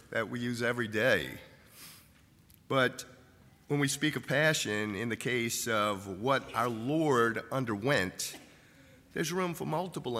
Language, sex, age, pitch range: English, male, 50-69, 115-150 Hz